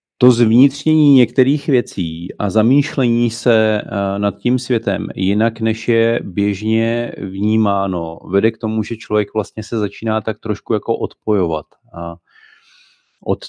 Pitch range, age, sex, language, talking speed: 100-125 Hz, 40-59, male, Czech, 125 wpm